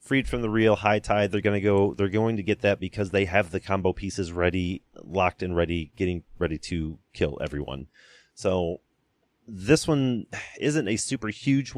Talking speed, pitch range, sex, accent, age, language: 185 wpm, 90-110 Hz, male, American, 30-49, English